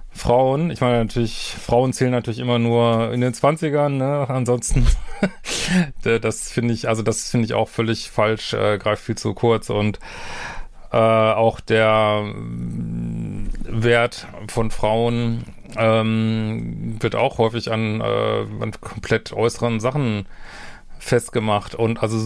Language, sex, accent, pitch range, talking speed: German, male, German, 110-125 Hz, 130 wpm